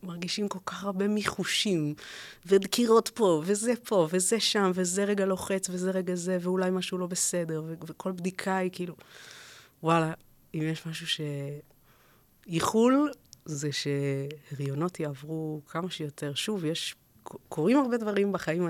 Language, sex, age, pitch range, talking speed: Hebrew, female, 30-49, 150-190 Hz, 140 wpm